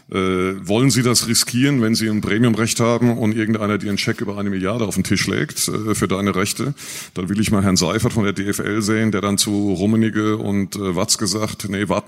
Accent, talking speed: German, 230 wpm